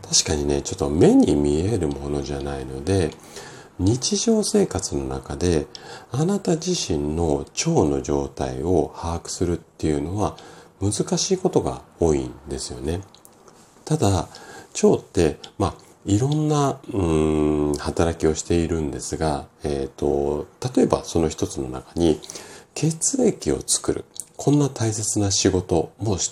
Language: Japanese